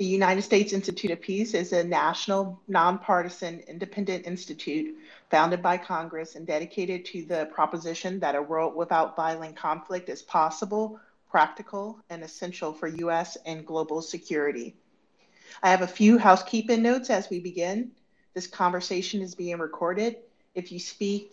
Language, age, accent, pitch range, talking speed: English, 40-59, American, 160-195 Hz, 150 wpm